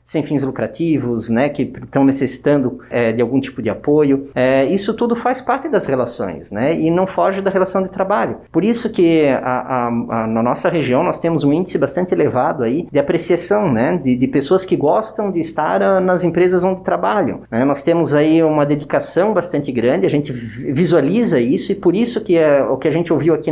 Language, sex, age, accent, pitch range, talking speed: Portuguese, male, 20-39, Brazilian, 140-195 Hz, 205 wpm